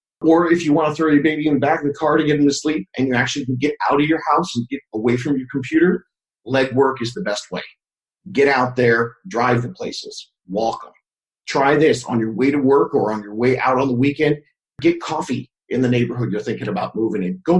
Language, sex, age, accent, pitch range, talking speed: English, male, 40-59, American, 135-180 Hz, 250 wpm